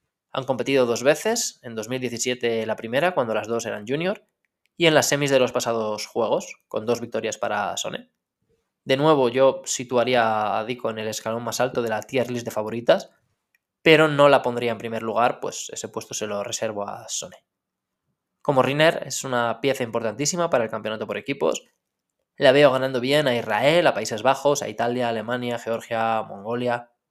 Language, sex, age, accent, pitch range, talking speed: Spanish, male, 20-39, Spanish, 115-140 Hz, 185 wpm